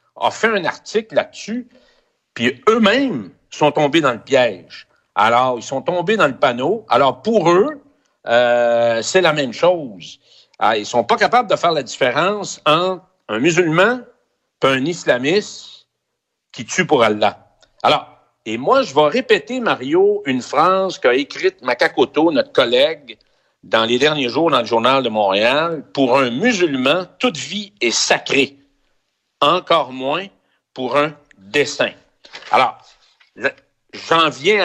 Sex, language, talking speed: male, French, 145 wpm